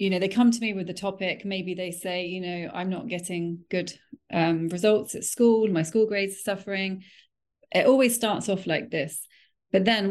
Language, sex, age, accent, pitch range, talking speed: English, female, 30-49, British, 175-210 Hz, 210 wpm